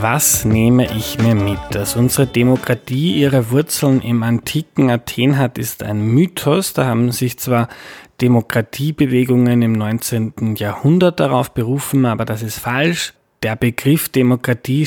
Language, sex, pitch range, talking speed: German, male, 115-140 Hz, 135 wpm